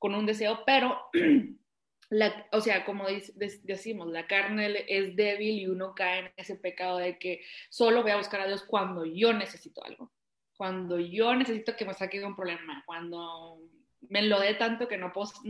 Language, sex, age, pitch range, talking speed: Spanish, female, 20-39, 185-220 Hz, 195 wpm